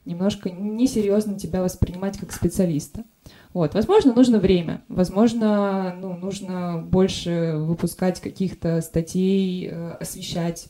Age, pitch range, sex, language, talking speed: 20-39, 175-210 Hz, female, Russian, 100 wpm